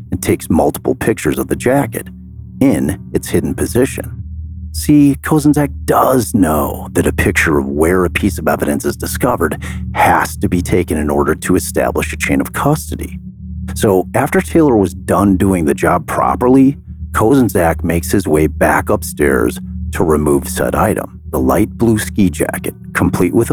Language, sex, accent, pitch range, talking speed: English, male, American, 80-95 Hz, 165 wpm